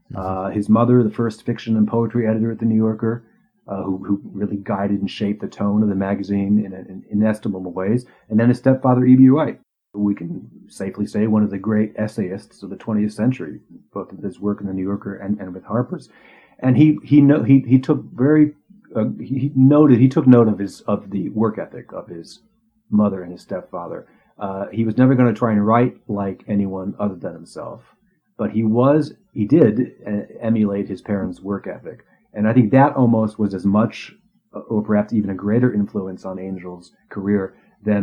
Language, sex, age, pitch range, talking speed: English, male, 40-59, 100-115 Hz, 205 wpm